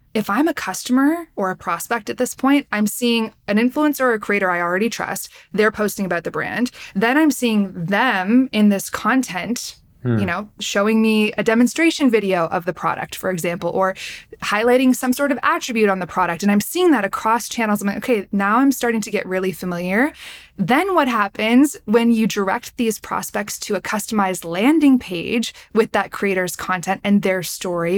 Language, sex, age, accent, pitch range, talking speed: English, female, 20-39, American, 195-255 Hz, 190 wpm